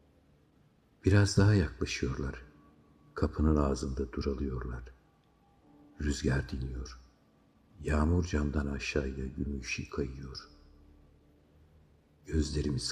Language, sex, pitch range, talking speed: Turkish, male, 70-80 Hz, 65 wpm